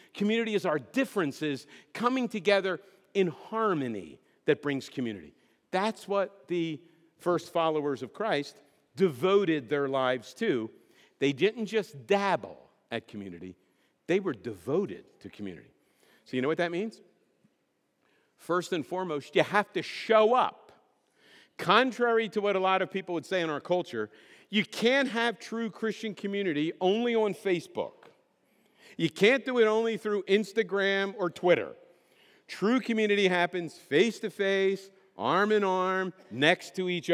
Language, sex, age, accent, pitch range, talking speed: English, male, 50-69, American, 165-225 Hz, 135 wpm